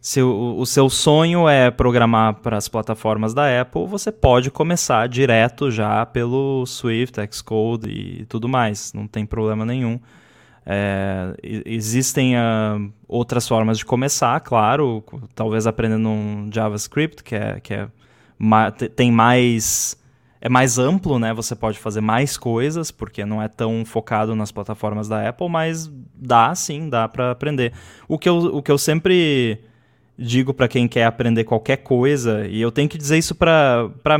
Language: Portuguese